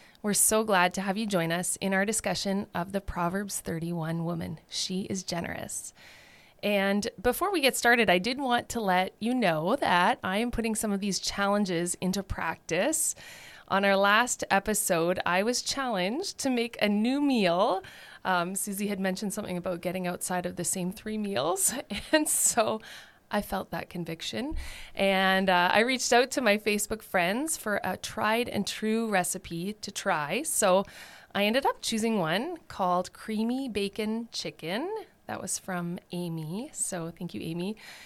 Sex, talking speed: female, 170 wpm